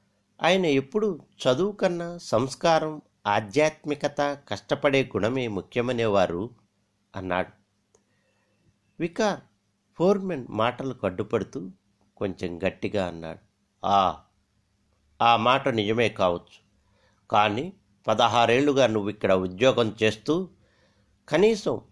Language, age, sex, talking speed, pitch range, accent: Telugu, 60-79, male, 80 wpm, 100-145 Hz, native